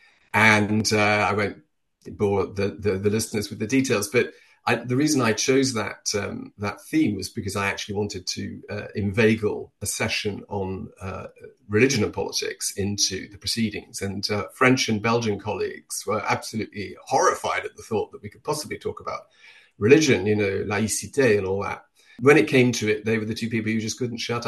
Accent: British